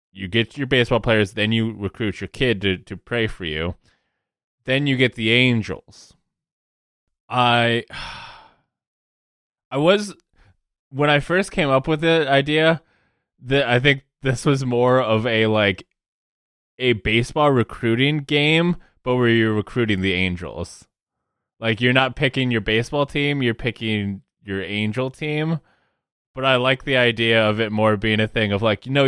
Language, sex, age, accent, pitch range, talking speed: English, male, 20-39, American, 105-135 Hz, 160 wpm